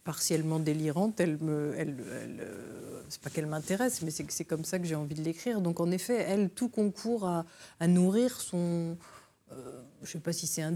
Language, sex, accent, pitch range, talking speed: French, female, French, 165-205 Hz, 220 wpm